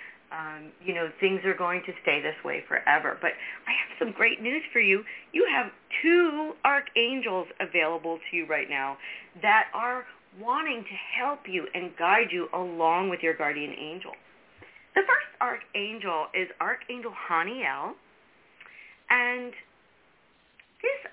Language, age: English, 40-59